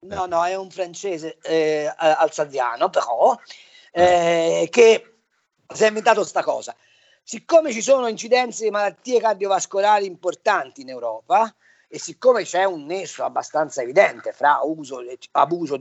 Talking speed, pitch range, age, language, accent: 135 wpm, 155-260 Hz, 40-59, Italian, native